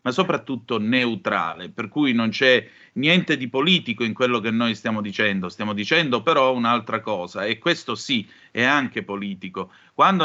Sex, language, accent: male, Italian, native